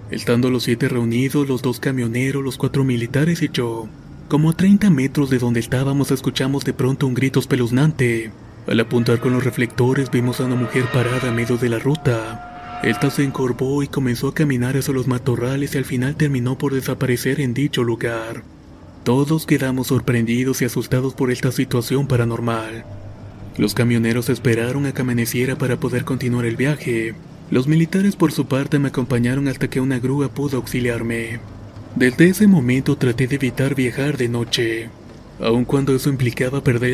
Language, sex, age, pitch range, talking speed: Spanish, male, 30-49, 120-140 Hz, 170 wpm